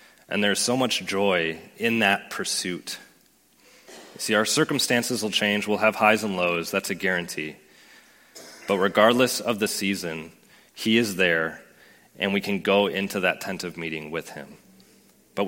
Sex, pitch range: male, 90-110 Hz